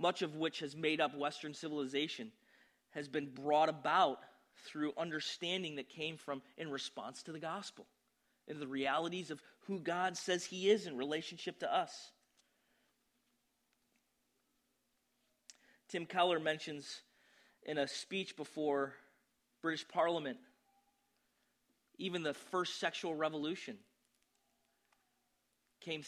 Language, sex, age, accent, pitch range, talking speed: English, male, 30-49, American, 155-195 Hz, 115 wpm